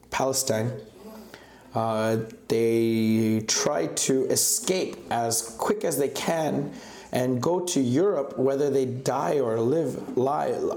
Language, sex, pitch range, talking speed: English, male, 115-170 Hz, 115 wpm